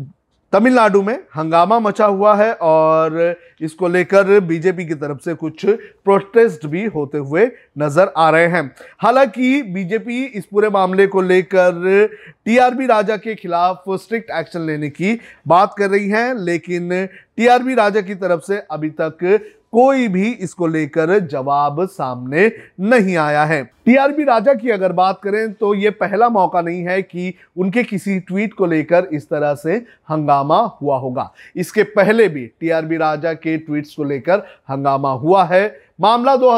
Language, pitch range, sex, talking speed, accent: Hindi, 160-210 Hz, male, 155 wpm, native